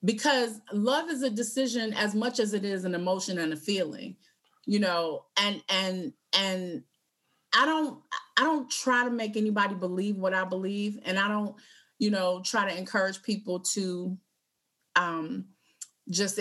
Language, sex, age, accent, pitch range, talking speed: English, female, 30-49, American, 180-225 Hz, 160 wpm